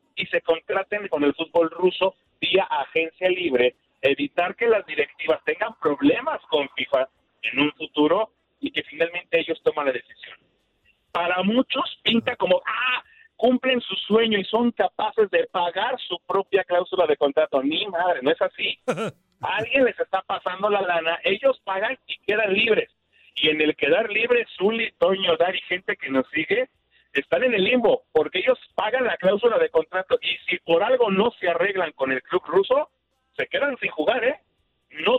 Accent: Mexican